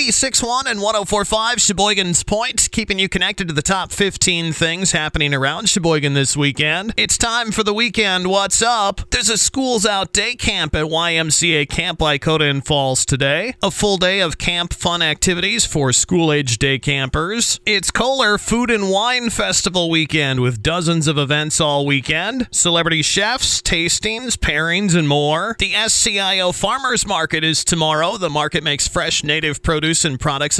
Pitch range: 145-195 Hz